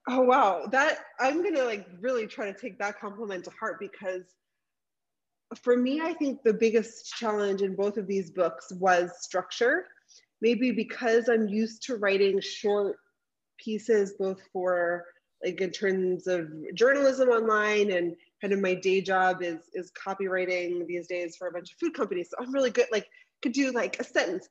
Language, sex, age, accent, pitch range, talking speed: English, female, 20-39, American, 185-245 Hz, 175 wpm